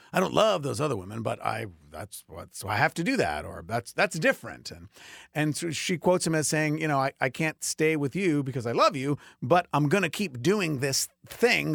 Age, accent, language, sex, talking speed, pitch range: 50-69, American, English, male, 245 wpm, 125-175 Hz